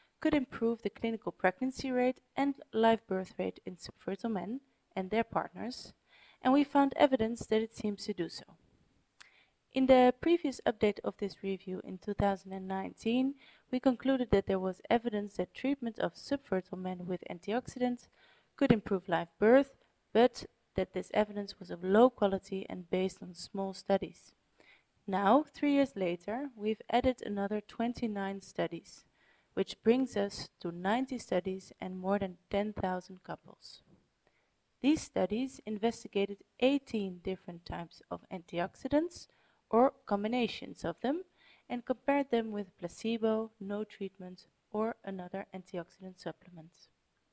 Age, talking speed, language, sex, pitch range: 20-39, 135 wpm, English, female, 190-245 Hz